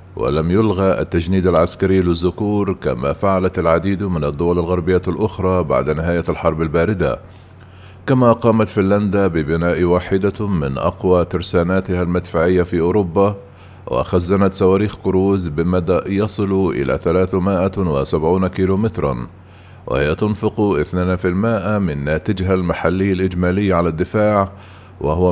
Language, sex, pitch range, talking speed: Arabic, male, 90-100 Hz, 105 wpm